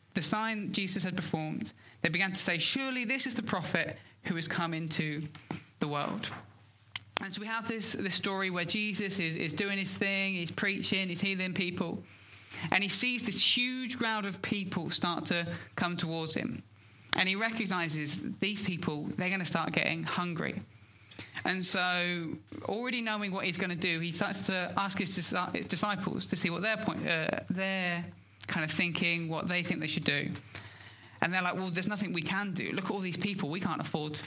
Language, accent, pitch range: English, British, 155-200 Hz